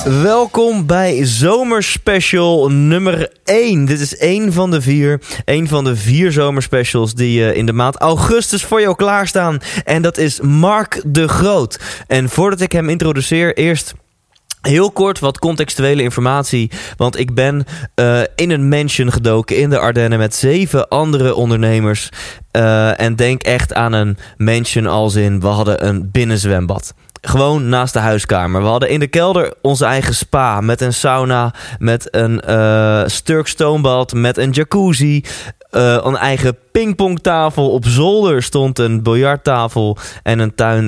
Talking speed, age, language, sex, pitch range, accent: 150 wpm, 20-39, Dutch, male, 115-150 Hz, Dutch